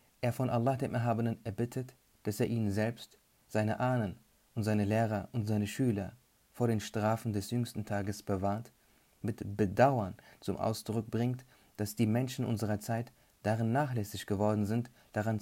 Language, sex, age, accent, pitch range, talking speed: German, male, 40-59, German, 105-120 Hz, 155 wpm